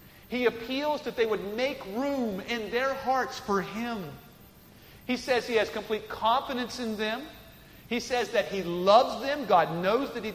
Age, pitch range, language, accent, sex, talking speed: 40-59, 195-255 Hz, English, American, male, 175 wpm